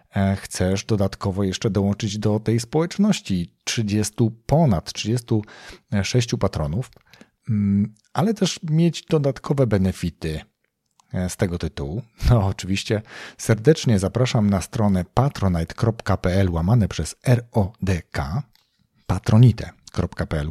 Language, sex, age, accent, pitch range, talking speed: Polish, male, 40-59, native, 95-120 Hz, 90 wpm